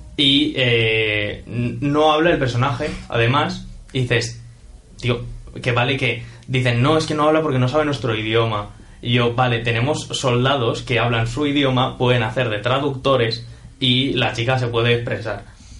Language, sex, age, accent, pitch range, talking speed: Spanish, male, 20-39, Spanish, 115-130 Hz, 165 wpm